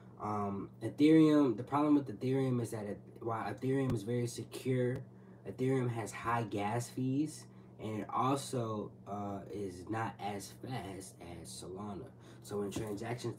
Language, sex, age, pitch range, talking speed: English, male, 20-39, 100-125 Hz, 145 wpm